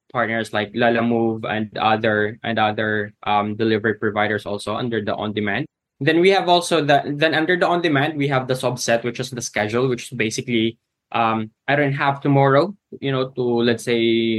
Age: 20-39